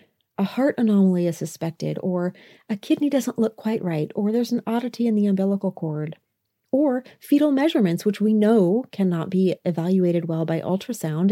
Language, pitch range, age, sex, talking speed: English, 170-220 Hz, 40-59, female, 170 wpm